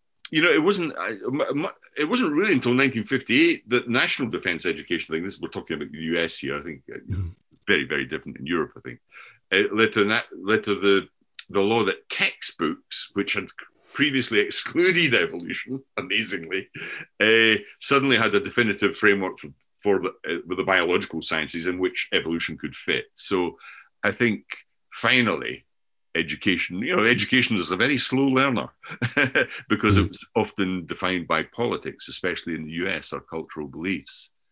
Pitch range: 85-115 Hz